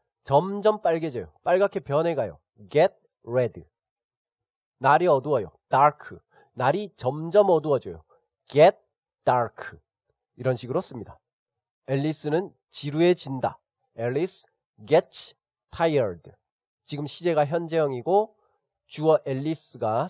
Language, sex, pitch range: Korean, male, 135-180 Hz